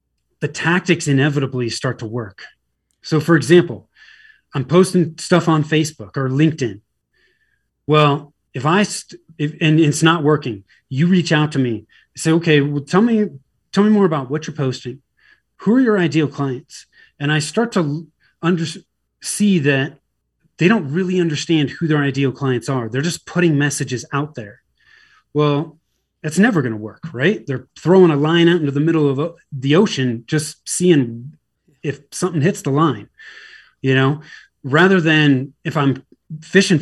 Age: 30-49